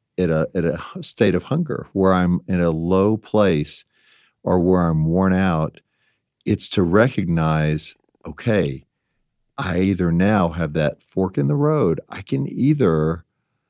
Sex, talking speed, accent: male, 150 wpm, American